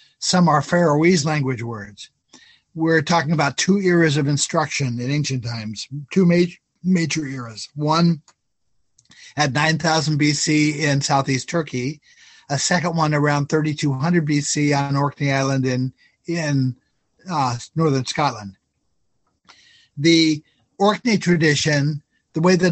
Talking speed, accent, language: 120 wpm, American, English